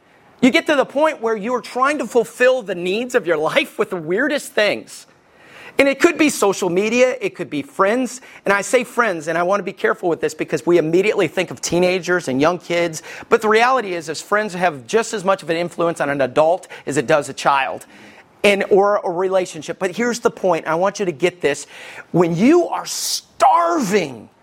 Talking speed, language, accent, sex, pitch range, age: 215 wpm, English, American, male, 170-240 Hz, 40-59